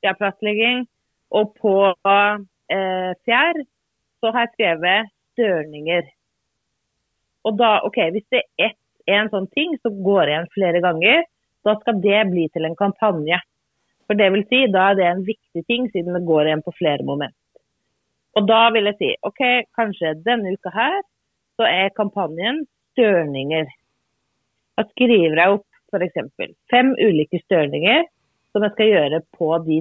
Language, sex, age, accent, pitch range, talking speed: Swedish, female, 30-49, native, 170-230 Hz, 160 wpm